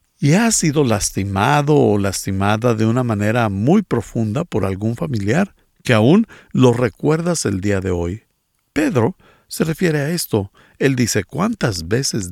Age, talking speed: 50-69, 150 wpm